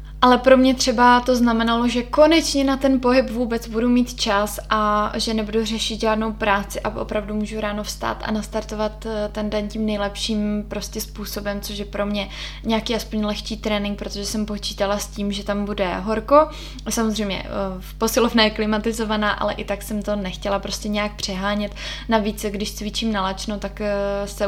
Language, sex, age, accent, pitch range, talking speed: Czech, female, 20-39, native, 200-220 Hz, 170 wpm